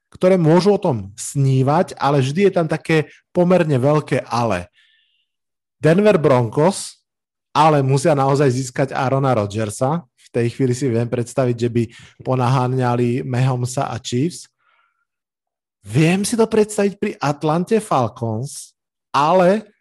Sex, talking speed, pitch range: male, 125 wpm, 125-150 Hz